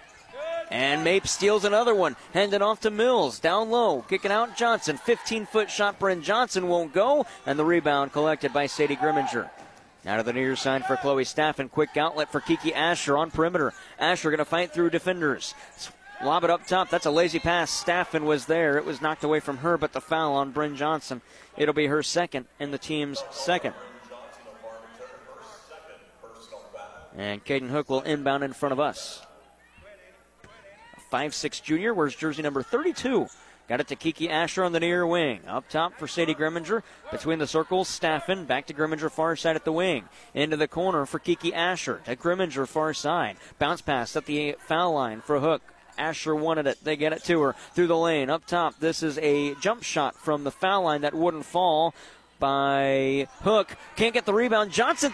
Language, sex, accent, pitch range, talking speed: English, male, American, 145-185 Hz, 185 wpm